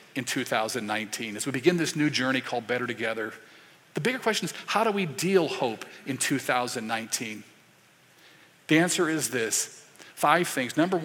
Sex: male